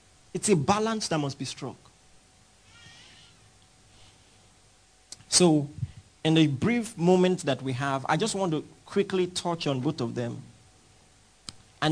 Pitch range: 110-175 Hz